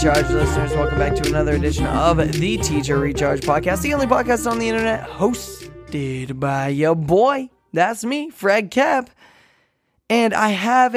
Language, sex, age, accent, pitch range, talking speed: English, male, 10-29, American, 150-195 Hz, 155 wpm